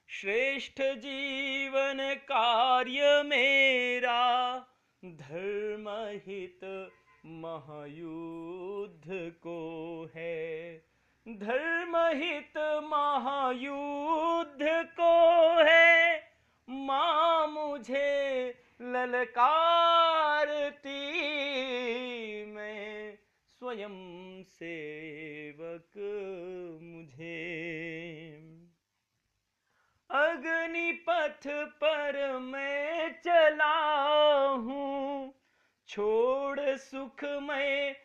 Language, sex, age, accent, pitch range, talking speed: Hindi, male, 40-59, native, 235-300 Hz, 45 wpm